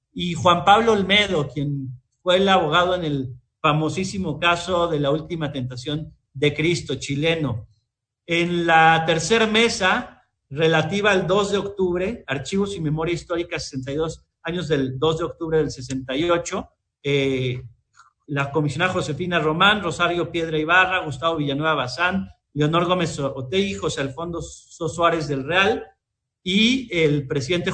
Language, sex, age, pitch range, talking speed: Spanish, male, 50-69, 140-175 Hz, 135 wpm